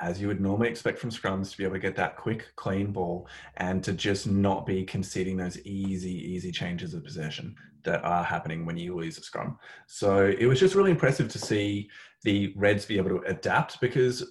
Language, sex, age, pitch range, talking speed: English, male, 20-39, 95-115 Hz, 215 wpm